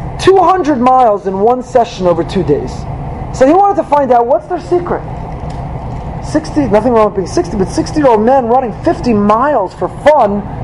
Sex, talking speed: male, 175 wpm